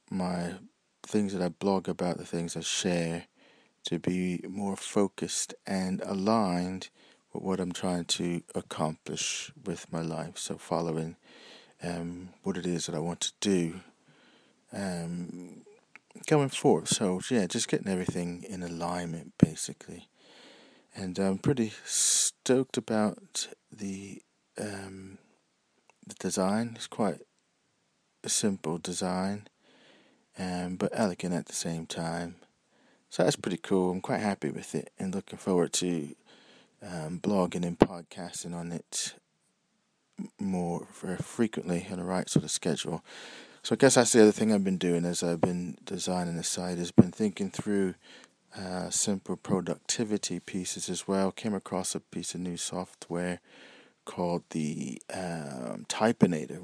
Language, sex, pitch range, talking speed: English, male, 85-95 Hz, 140 wpm